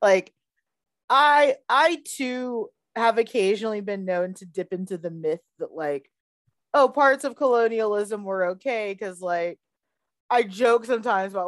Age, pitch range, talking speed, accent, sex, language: 30-49, 165-220 Hz, 140 wpm, American, female, English